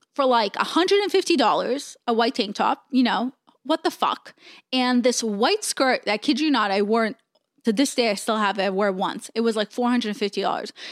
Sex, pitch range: female, 220-280 Hz